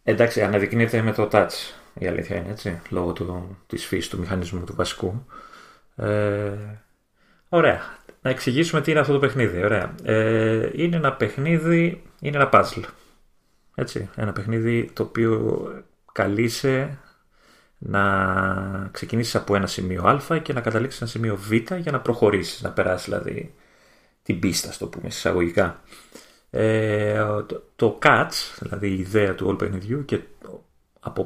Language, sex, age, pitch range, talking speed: Greek, male, 30-49, 100-130 Hz, 135 wpm